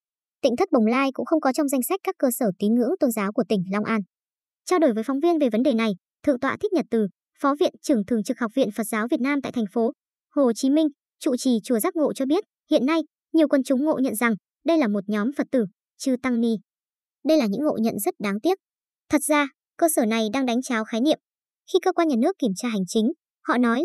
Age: 20-39